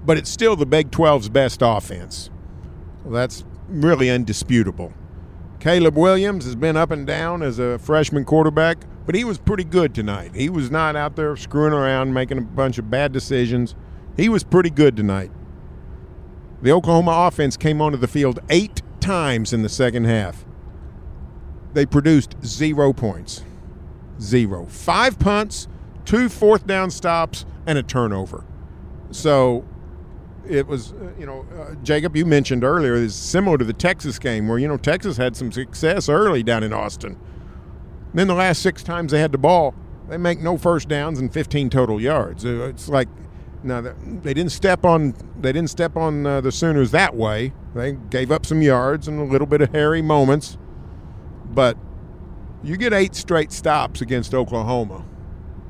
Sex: male